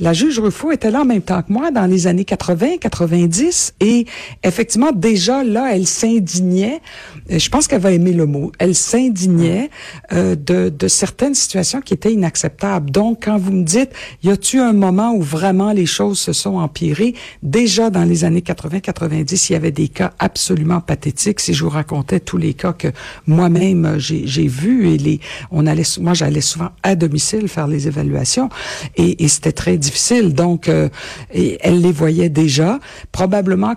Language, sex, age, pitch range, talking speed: French, female, 60-79, 155-200 Hz, 180 wpm